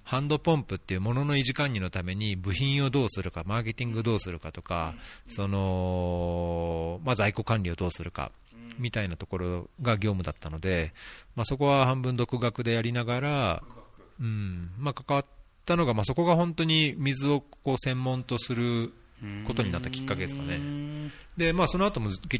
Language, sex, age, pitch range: Japanese, male, 40-59, 95-130 Hz